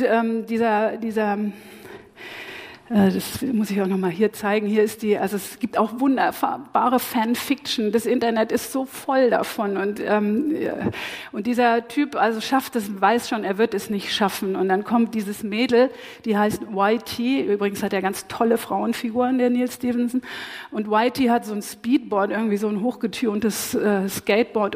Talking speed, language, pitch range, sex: 175 wpm, English, 205-245 Hz, female